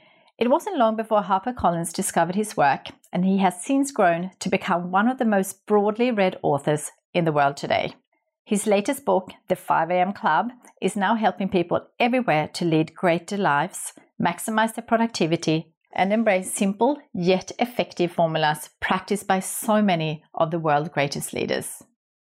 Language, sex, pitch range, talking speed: English, female, 170-225 Hz, 160 wpm